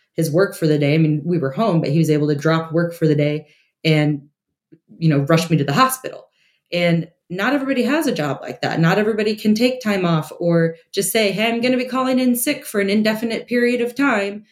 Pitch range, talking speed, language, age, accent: 170-220 Hz, 245 wpm, English, 20-39, American